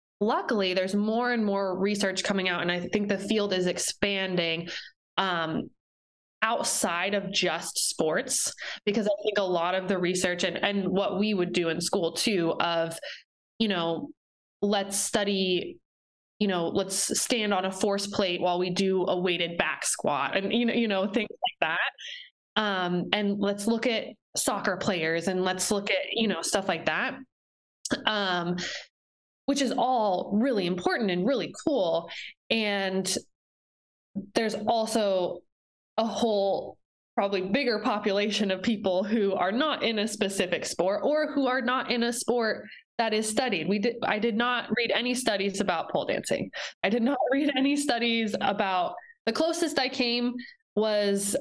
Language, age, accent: English, 20-39, American